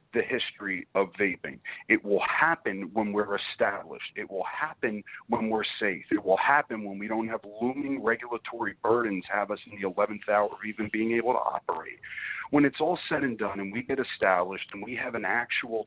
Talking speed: 200 wpm